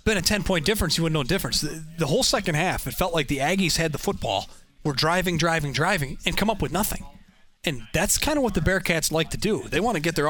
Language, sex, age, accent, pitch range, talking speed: English, male, 30-49, American, 150-190 Hz, 275 wpm